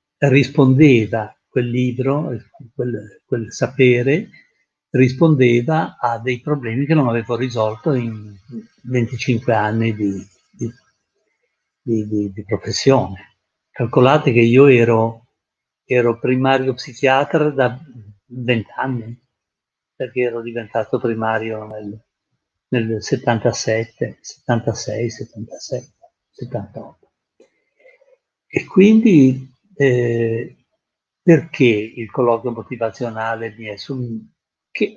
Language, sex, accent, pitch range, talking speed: Italian, male, native, 110-135 Hz, 90 wpm